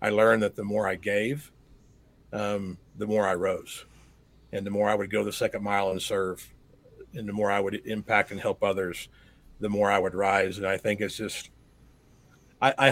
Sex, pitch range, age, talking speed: male, 105-125 Hz, 50-69, 205 wpm